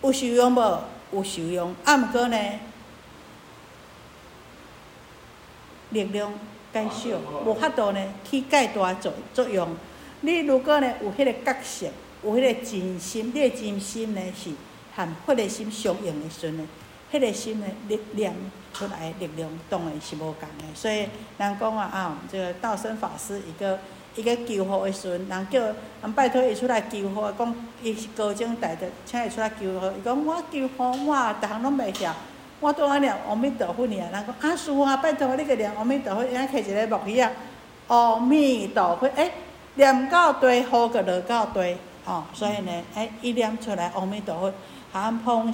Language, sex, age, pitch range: Chinese, female, 60-79, 185-245 Hz